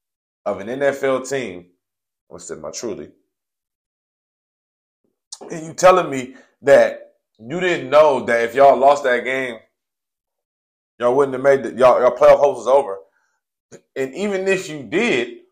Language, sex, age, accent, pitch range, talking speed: English, male, 20-39, American, 130-185 Hz, 145 wpm